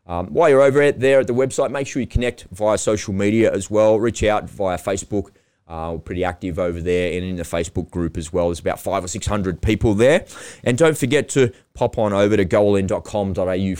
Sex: male